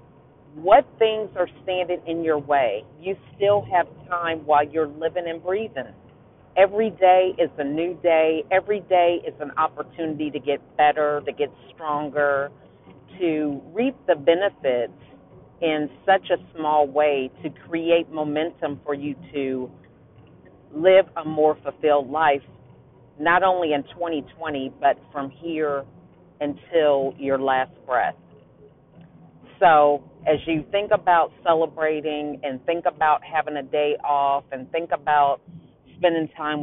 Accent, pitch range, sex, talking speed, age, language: American, 140-165 Hz, female, 135 wpm, 40-59, English